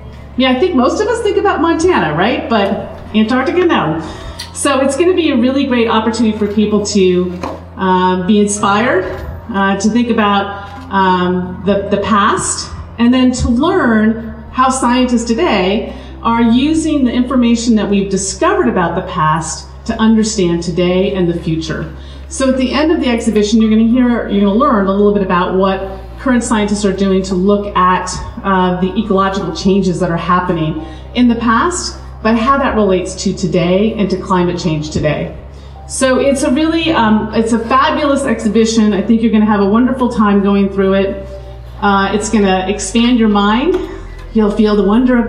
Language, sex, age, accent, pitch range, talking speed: English, female, 40-59, American, 190-245 Hz, 180 wpm